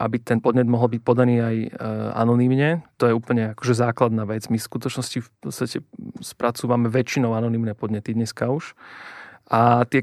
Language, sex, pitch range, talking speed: Slovak, male, 115-130 Hz, 170 wpm